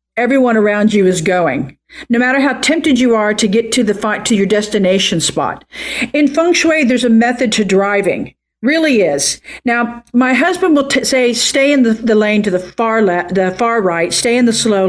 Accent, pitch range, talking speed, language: American, 195-255 Hz, 215 wpm, English